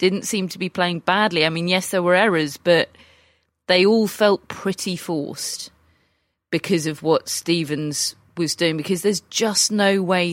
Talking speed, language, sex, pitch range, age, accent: 170 wpm, English, female, 160-195 Hz, 30-49, British